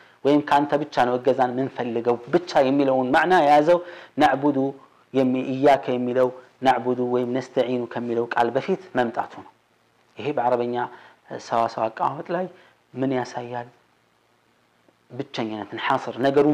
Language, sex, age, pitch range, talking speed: Amharic, male, 30-49, 120-150 Hz, 115 wpm